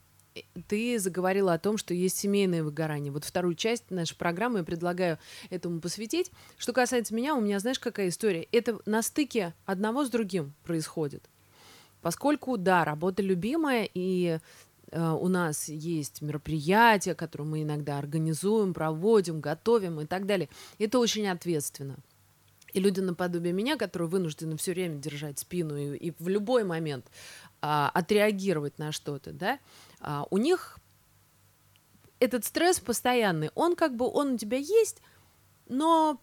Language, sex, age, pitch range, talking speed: Russian, female, 20-39, 155-230 Hz, 145 wpm